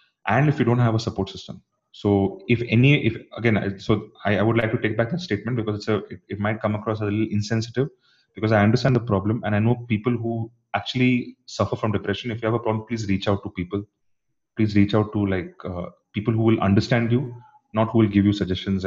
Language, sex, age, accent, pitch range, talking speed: English, male, 30-49, Indian, 100-125 Hz, 245 wpm